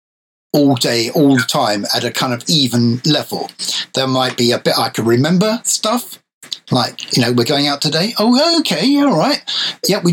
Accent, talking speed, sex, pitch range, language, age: British, 200 wpm, male, 130-185 Hz, English, 60-79